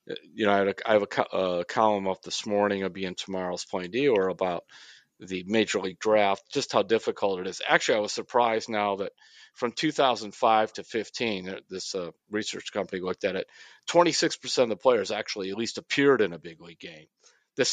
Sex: male